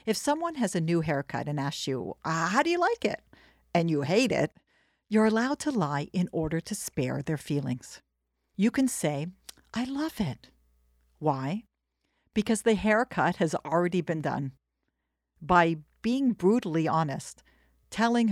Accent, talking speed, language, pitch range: American, 155 wpm, English, 135-200 Hz